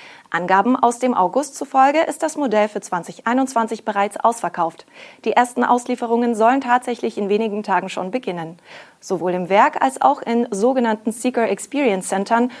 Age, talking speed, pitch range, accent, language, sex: 30-49, 150 wpm, 195-245 Hz, German, German, female